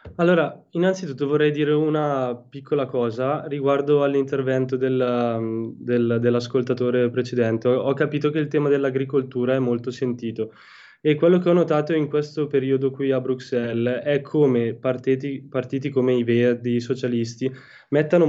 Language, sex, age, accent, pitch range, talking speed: Italian, male, 10-29, native, 125-150 Hz, 135 wpm